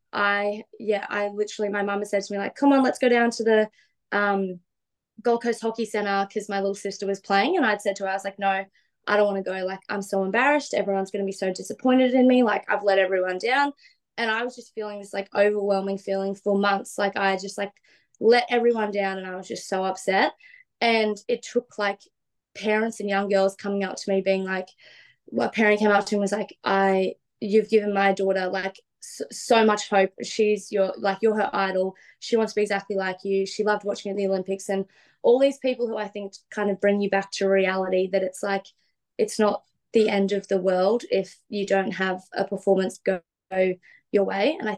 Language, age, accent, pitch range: English, 20-39, Australian, 195-215 Hz